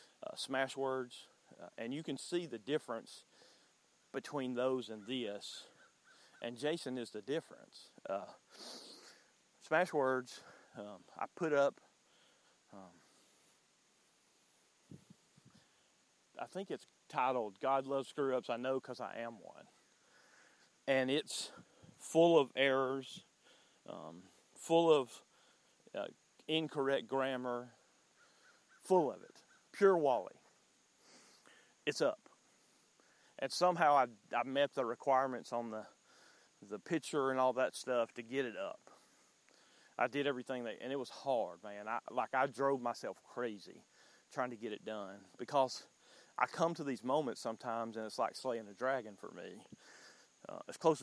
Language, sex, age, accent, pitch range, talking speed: English, male, 40-59, American, 120-140 Hz, 135 wpm